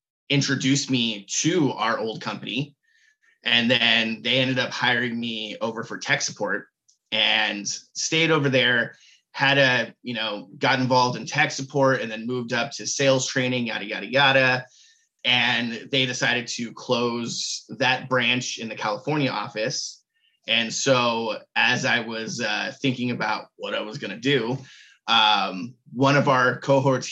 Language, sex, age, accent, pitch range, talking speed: English, male, 20-39, American, 115-135 Hz, 155 wpm